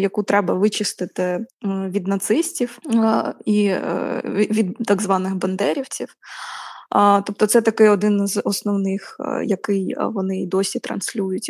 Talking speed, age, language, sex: 105 wpm, 20-39, Ukrainian, female